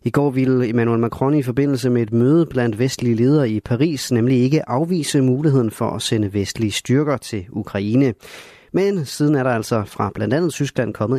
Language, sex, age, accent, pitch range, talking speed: Danish, male, 30-49, native, 110-145 Hz, 195 wpm